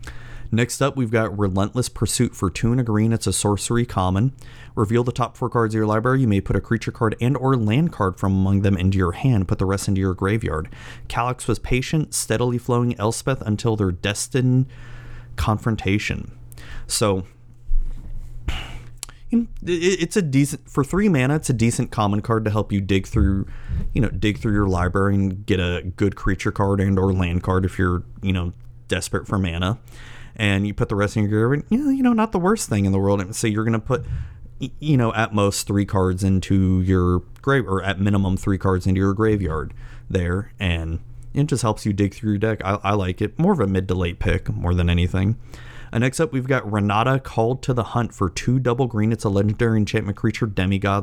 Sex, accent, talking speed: male, American, 205 wpm